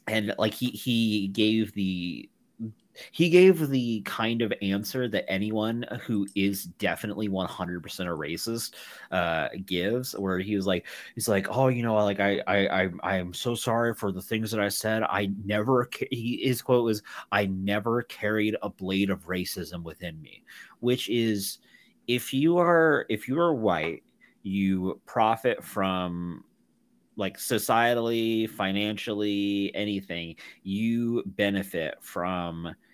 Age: 30-49